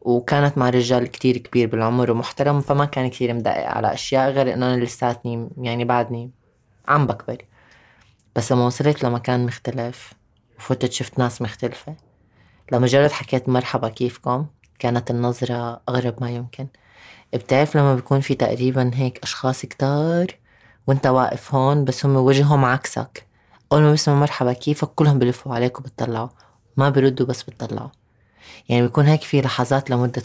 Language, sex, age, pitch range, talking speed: Arabic, female, 20-39, 120-135 Hz, 145 wpm